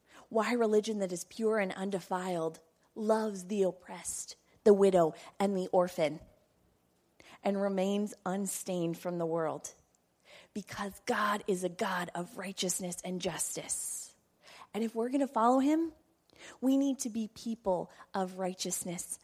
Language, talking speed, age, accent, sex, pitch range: English, 135 wpm, 20-39, American, female, 185-225 Hz